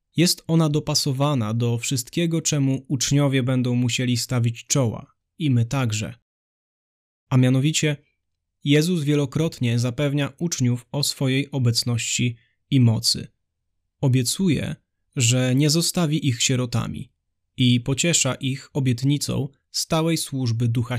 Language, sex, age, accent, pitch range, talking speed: Polish, male, 20-39, native, 120-145 Hz, 110 wpm